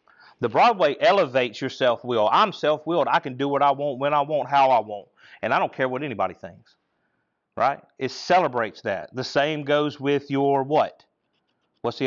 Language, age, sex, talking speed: English, 40-59, male, 190 wpm